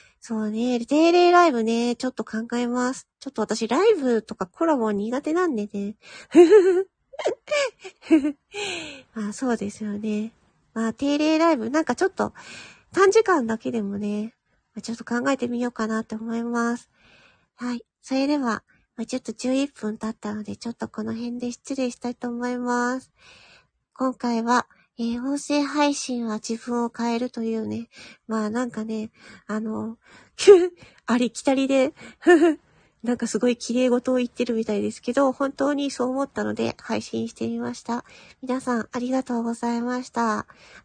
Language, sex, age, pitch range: Japanese, female, 40-59, 225-265 Hz